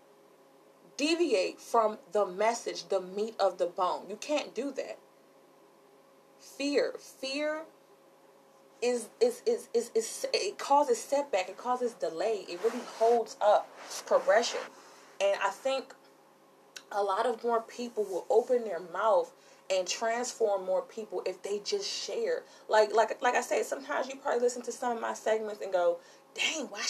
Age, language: 20-39, English